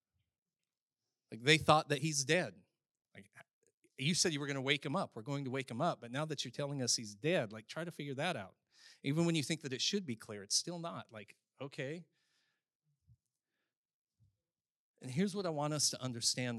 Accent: American